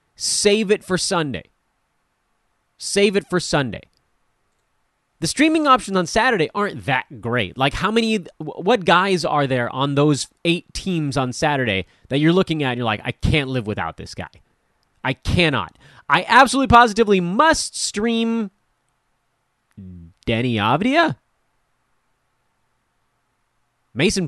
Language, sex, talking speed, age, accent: English, male, 130 wpm, 30-49, American